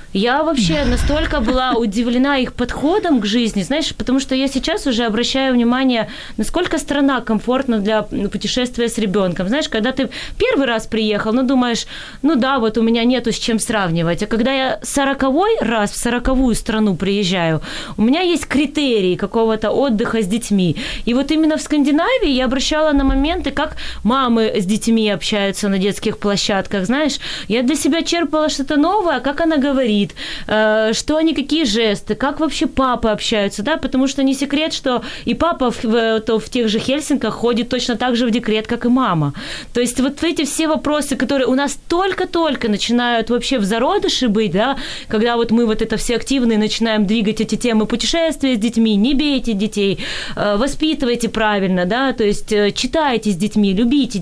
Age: 20-39